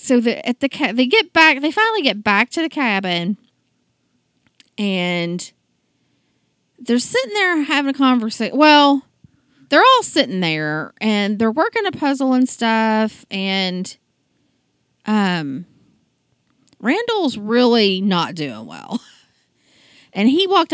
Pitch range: 185-265 Hz